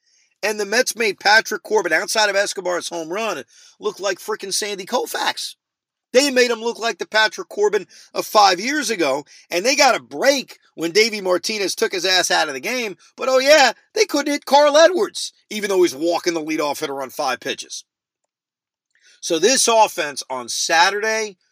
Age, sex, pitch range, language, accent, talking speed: 40-59, male, 160-260 Hz, English, American, 185 wpm